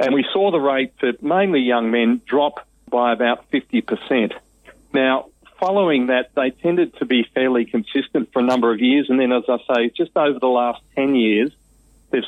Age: 40-59